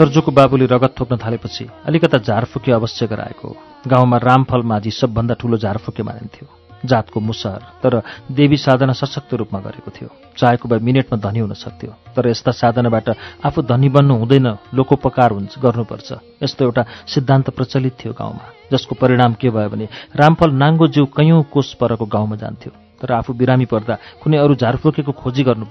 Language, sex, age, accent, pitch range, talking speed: English, male, 40-59, Indian, 115-145 Hz, 105 wpm